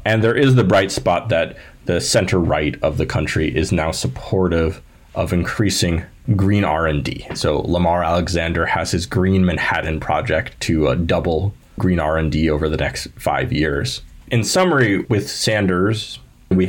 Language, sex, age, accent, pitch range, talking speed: English, male, 30-49, American, 85-110 Hz, 155 wpm